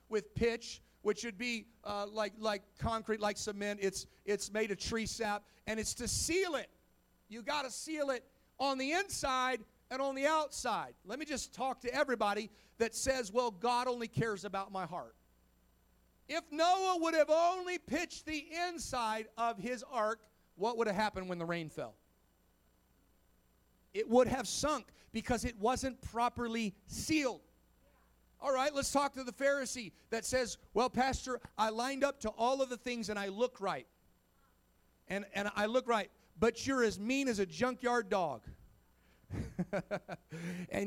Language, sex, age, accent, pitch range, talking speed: English, male, 40-59, American, 205-260 Hz, 165 wpm